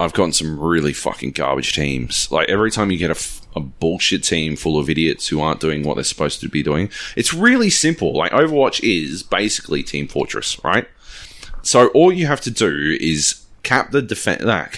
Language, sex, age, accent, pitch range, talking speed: English, male, 30-49, Australian, 85-135 Hz, 190 wpm